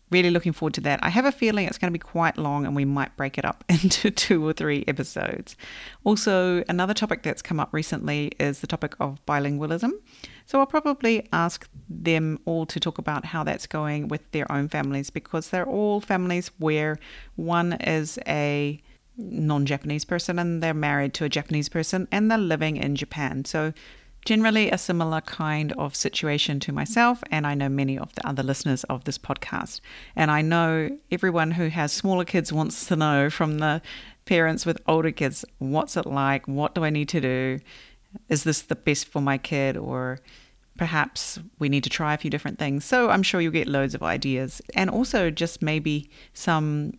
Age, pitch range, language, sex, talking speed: 40-59, 145-180 Hz, English, female, 195 wpm